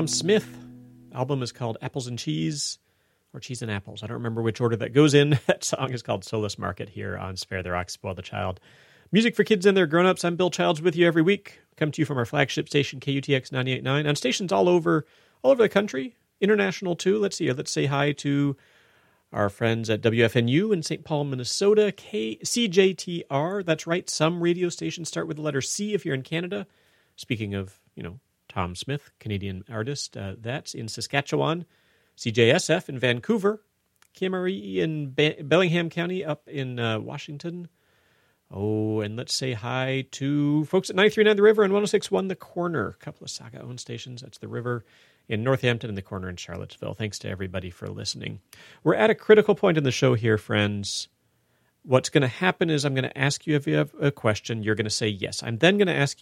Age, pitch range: 30-49, 115-170 Hz